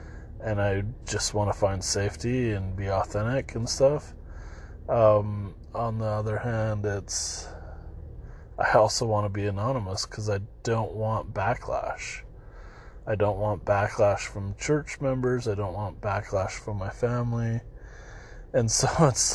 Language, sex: English, male